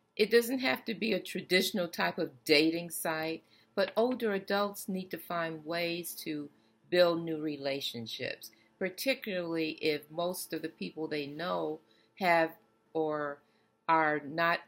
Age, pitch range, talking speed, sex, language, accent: 50-69, 125-185 Hz, 140 wpm, female, English, American